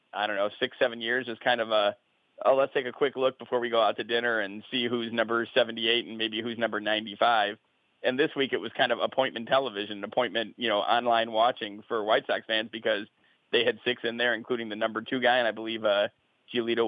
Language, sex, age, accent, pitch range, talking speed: English, male, 40-59, American, 115-135 Hz, 235 wpm